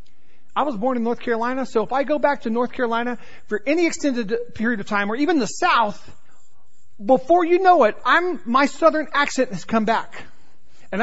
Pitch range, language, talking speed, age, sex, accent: 200-280 Hz, English, 195 wpm, 40-59, male, American